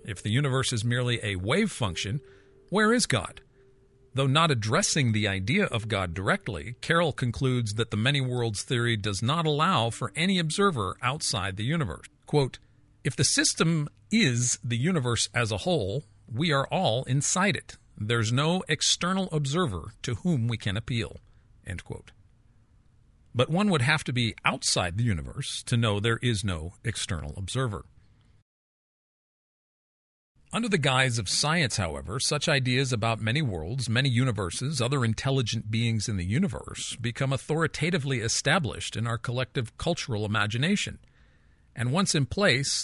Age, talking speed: 50-69, 150 wpm